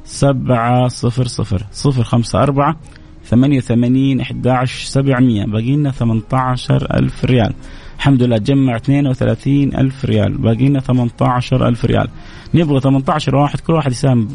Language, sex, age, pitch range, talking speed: Arabic, male, 30-49, 115-140 Hz, 115 wpm